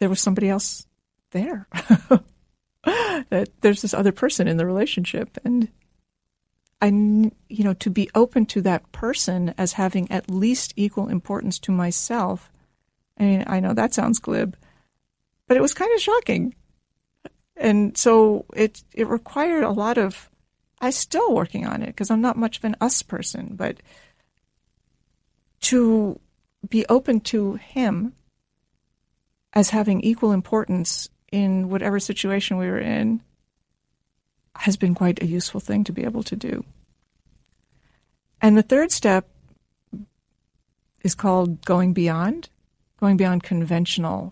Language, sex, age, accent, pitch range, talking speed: English, female, 40-59, American, 180-225 Hz, 140 wpm